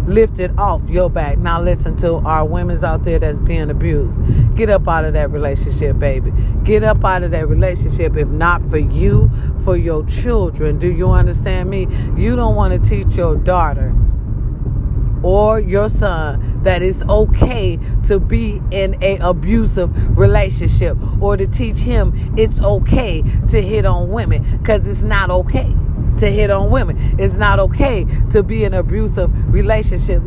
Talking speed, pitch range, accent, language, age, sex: 170 wpm, 105-120 Hz, American, English, 40-59, female